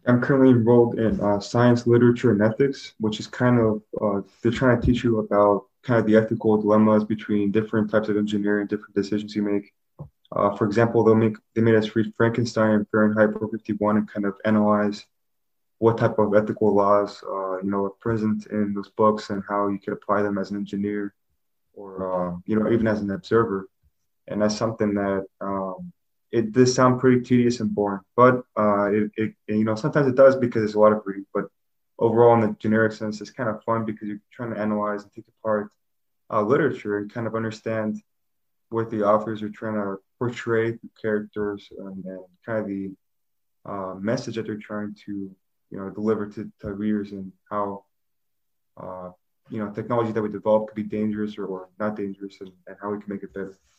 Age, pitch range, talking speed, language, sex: 20-39, 100-110 Hz, 200 wpm, English, male